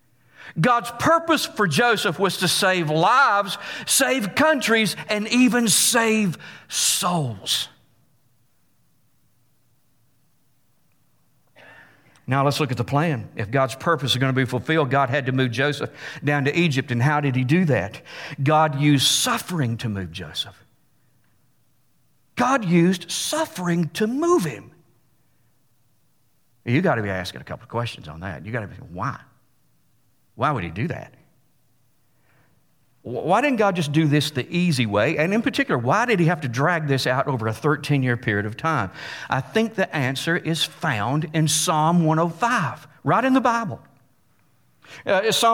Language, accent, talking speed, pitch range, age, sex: English, American, 155 wpm, 135-195 Hz, 50-69, male